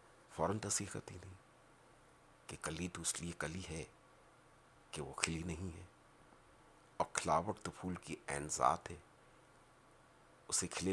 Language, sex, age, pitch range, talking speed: Urdu, male, 50-69, 85-105 Hz, 145 wpm